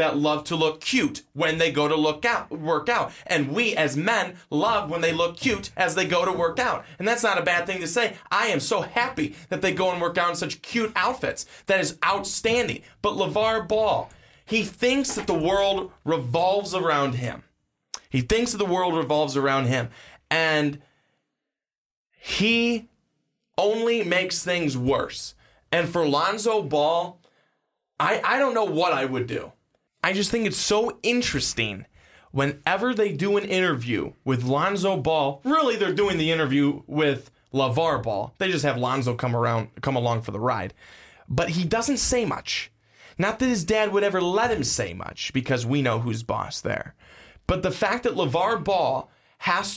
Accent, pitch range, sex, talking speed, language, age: American, 150-210 Hz, male, 180 wpm, English, 20-39